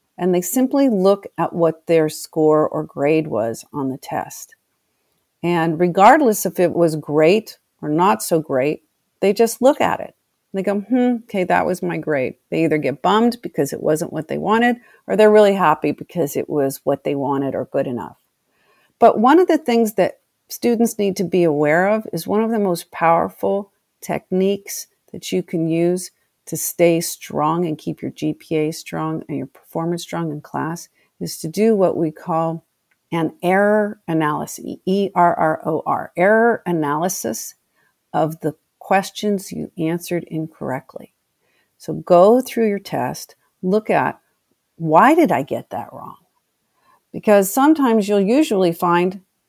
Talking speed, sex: 160 wpm, female